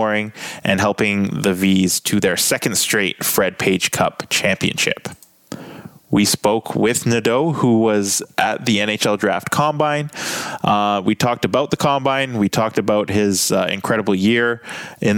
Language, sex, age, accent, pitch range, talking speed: English, male, 20-39, American, 105-120 Hz, 145 wpm